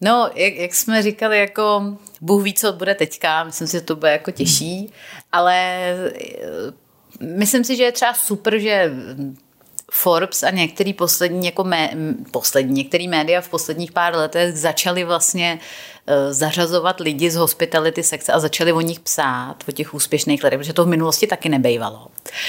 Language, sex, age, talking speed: Czech, female, 30-49, 165 wpm